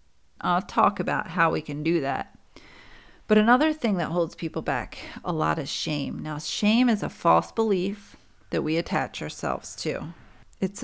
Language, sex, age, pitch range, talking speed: English, female, 40-59, 165-220 Hz, 170 wpm